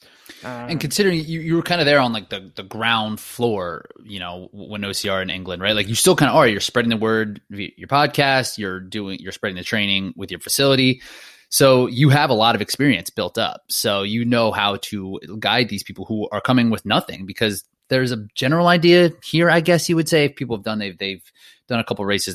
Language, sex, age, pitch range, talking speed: English, male, 20-39, 100-130 Hz, 235 wpm